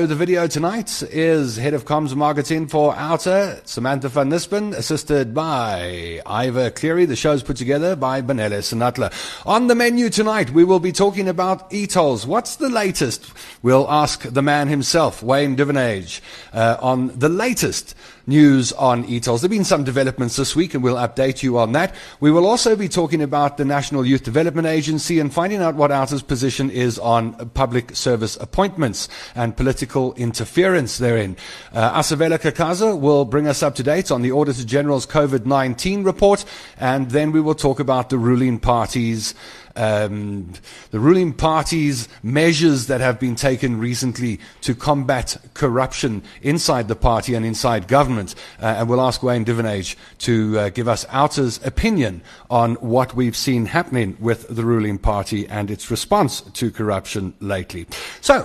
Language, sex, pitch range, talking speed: English, male, 120-165 Hz, 170 wpm